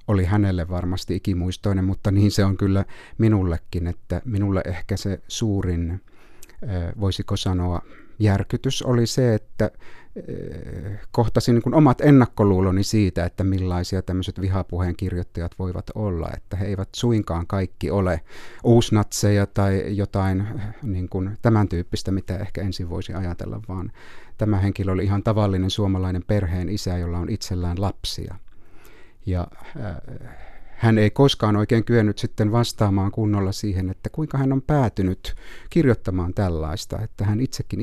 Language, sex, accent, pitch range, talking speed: Finnish, male, native, 90-110 Hz, 130 wpm